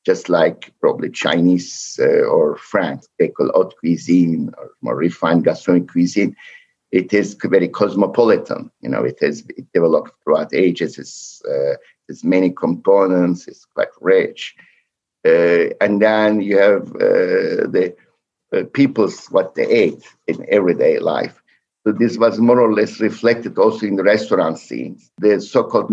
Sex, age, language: male, 60-79, English